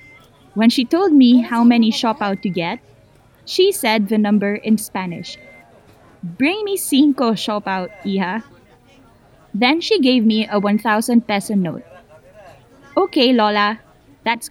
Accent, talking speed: Filipino, 130 wpm